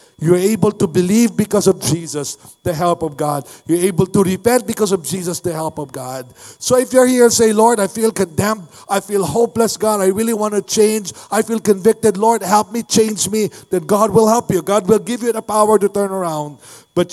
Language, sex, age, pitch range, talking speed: English, male, 50-69, 150-195 Hz, 225 wpm